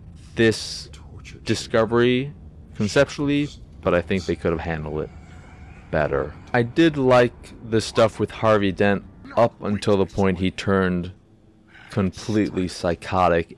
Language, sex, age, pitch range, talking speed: English, male, 30-49, 85-105 Hz, 125 wpm